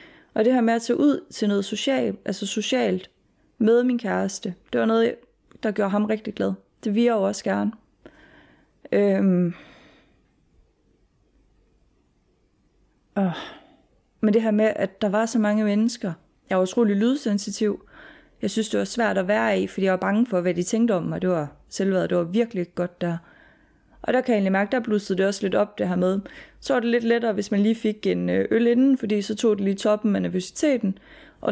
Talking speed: 200 wpm